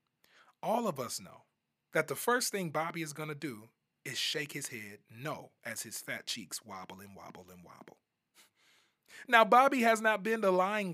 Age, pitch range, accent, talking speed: 30-49, 150-215 Hz, American, 185 wpm